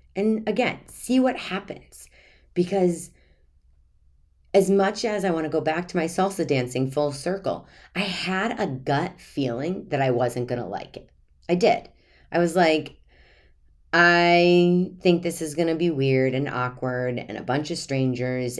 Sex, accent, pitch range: female, American, 120-160 Hz